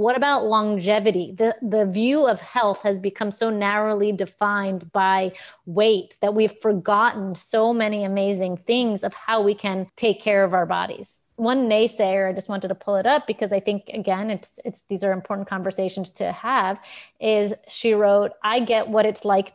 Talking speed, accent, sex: 185 wpm, American, female